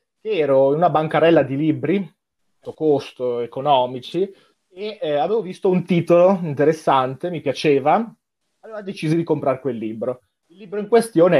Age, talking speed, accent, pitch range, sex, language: 30-49, 145 wpm, native, 130-190 Hz, male, Italian